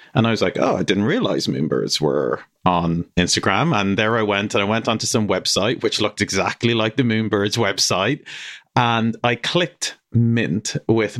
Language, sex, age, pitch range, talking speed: English, male, 40-59, 95-120 Hz, 180 wpm